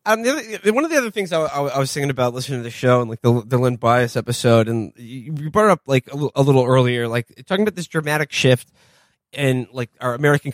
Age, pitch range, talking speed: 20-39, 115-150 Hz, 250 wpm